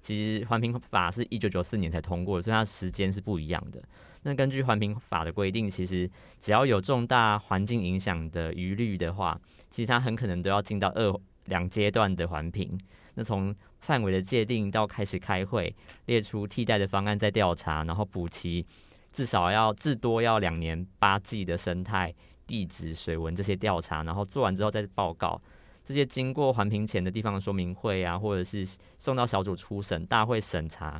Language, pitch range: Chinese, 90-110 Hz